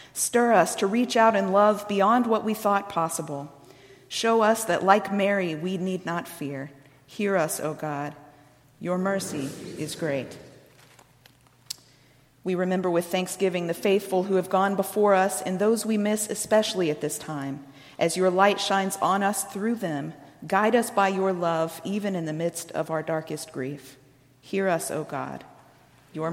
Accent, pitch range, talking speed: American, 155-200 Hz, 170 wpm